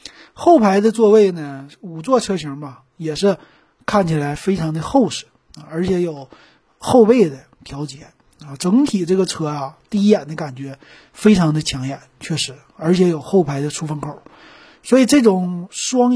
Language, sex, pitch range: Chinese, male, 155-215 Hz